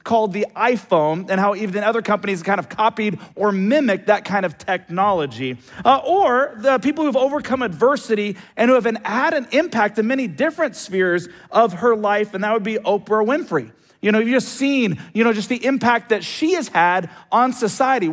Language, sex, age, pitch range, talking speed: English, male, 40-59, 205-275 Hz, 200 wpm